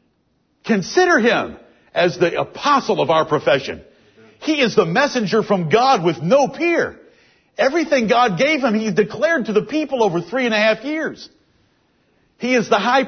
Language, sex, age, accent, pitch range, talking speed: English, male, 50-69, American, 185-250 Hz, 165 wpm